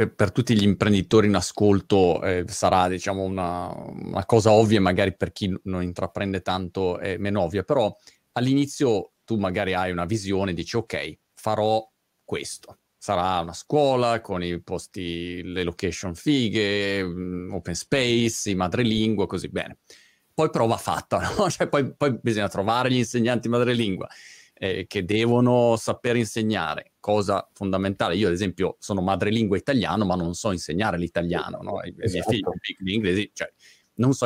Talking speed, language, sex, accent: 150 wpm, Italian, male, native